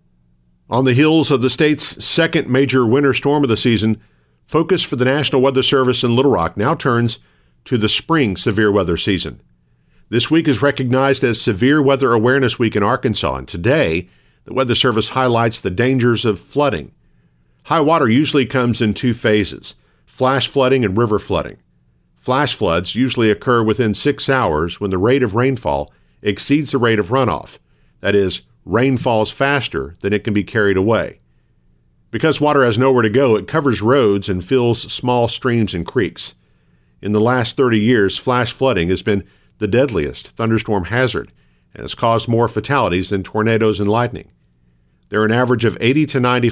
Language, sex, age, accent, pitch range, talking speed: English, male, 50-69, American, 95-130 Hz, 175 wpm